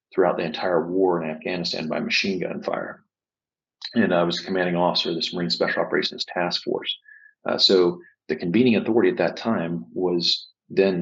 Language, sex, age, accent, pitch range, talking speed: English, male, 40-59, American, 85-120 Hz, 175 wpm